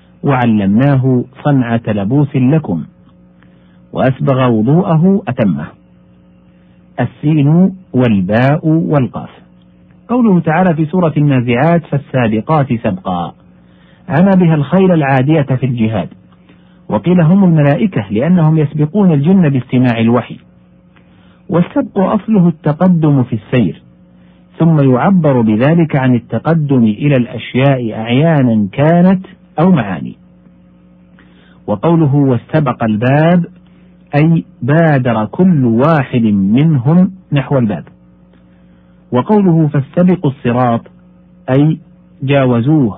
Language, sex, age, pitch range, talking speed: Arabic, male, 50-69, 110-165 Hz, 85 wpm